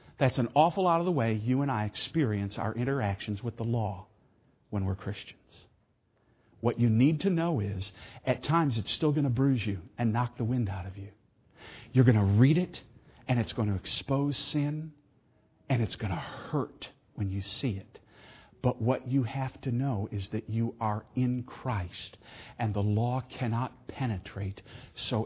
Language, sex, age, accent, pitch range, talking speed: English, male, 50-69, American, 105-130 Hz, 185 wpm